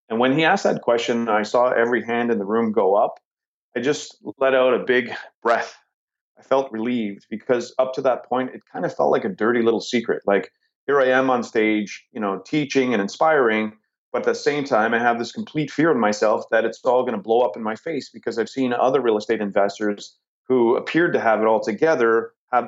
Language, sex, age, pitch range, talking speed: English, male, 30-49, 110-130 Hz, 230 wpm